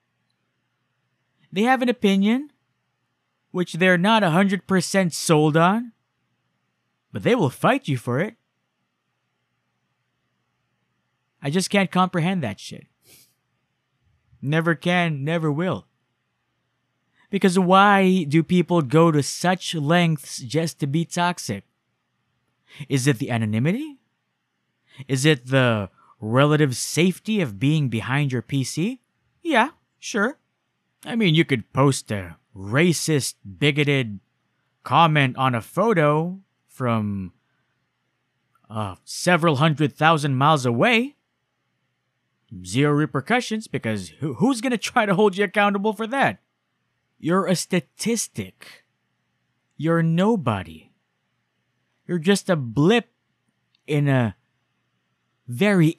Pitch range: 130-190 Hz